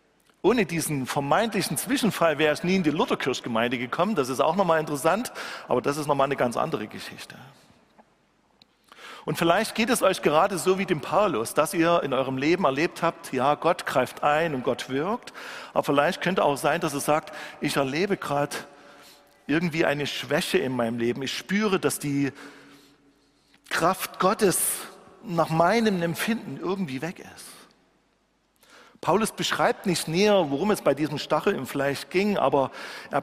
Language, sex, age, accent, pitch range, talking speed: German, male, 40-59, German, 145-195 Hz, 165 wpm